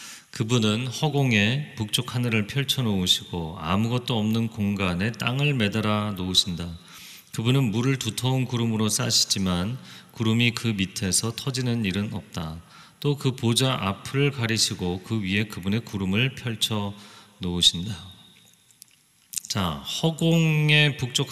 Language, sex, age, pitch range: Korean, male, 40-59, 100-135 Hz